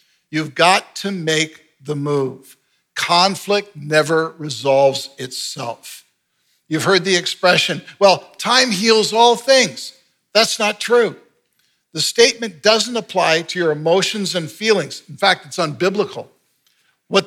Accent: American